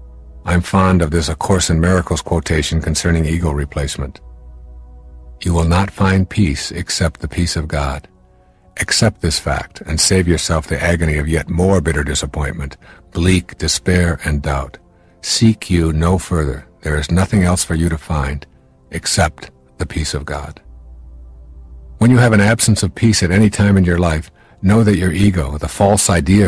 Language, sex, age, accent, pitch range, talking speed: English, male, 60-79, American, 75-95 Hz, 175 wpm